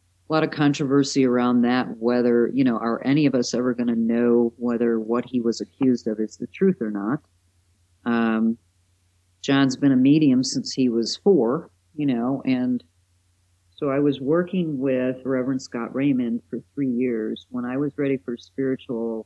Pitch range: 110-140 Hz